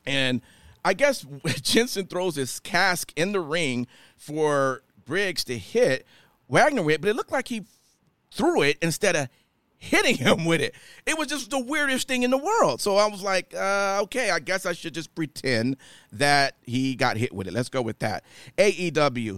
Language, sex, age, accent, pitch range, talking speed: English, male, 40-59, American, 135-200 Hz, 190 wpm